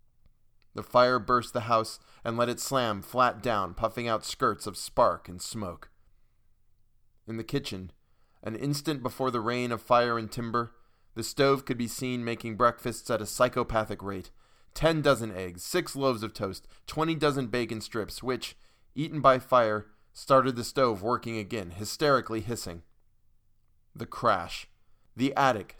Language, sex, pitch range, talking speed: English, male, 105-125 Hz, 155 wpm